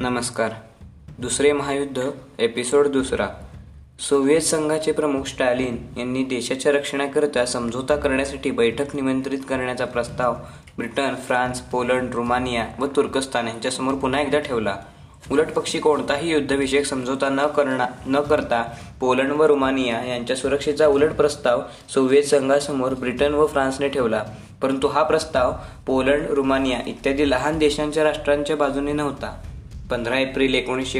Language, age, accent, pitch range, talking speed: Marathi, 20-39, native, 125-145 Hz, 120 wpm